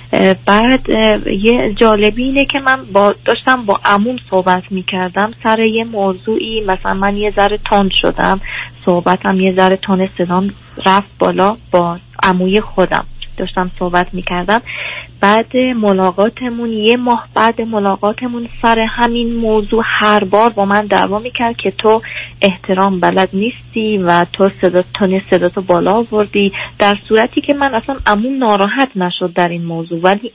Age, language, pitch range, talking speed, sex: 30-49, Persian, 185-225 Hz, 140 wpm, female